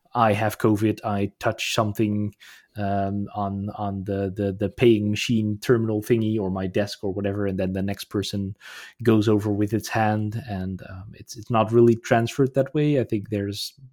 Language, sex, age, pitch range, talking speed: English, male, 20-39, 105-130 Hz, 185 wpm